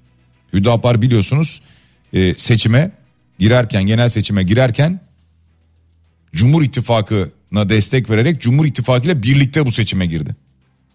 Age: 40-59